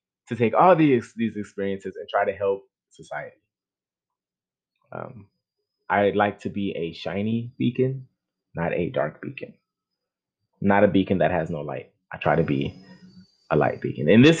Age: 20-39